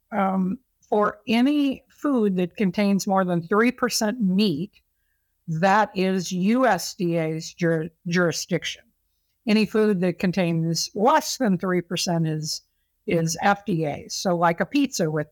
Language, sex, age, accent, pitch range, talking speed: English, female, 60-79, American, 170-215 Hz, 120 wpm